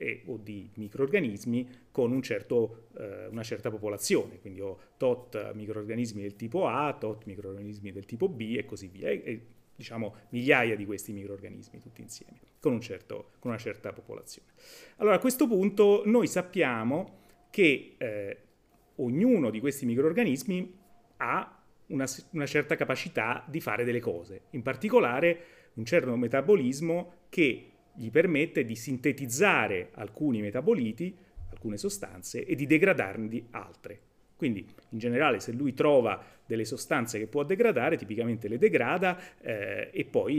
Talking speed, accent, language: 145 wpm, native, Italian